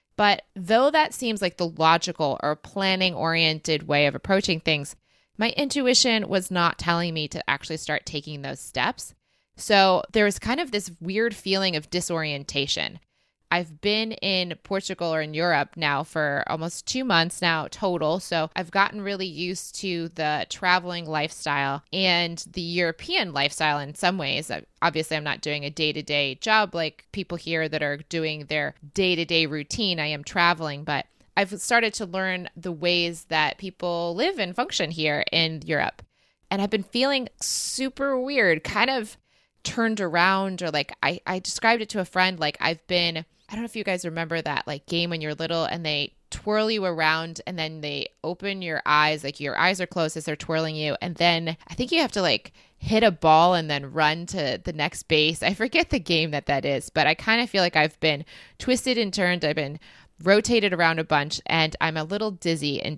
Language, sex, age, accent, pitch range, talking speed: English, female, 20-39, American, 155-195 Hz, 190 wpm